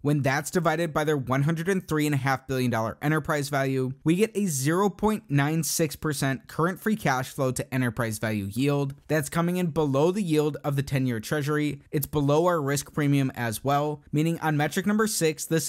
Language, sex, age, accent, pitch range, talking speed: English, male, 20-39, American, 140-175 Hz, 170 wpm